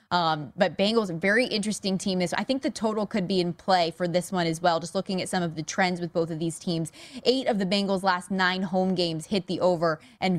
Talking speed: 250 wpm